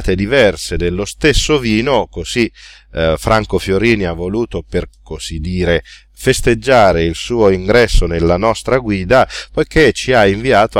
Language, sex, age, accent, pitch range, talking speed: Italian, male, 40-59, native, 95-120 Hz, 135 wpm